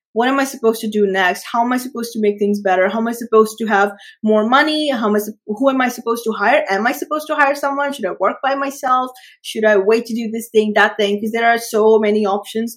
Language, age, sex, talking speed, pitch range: English, 20-39, female, 275 wpm, 205-255 Hz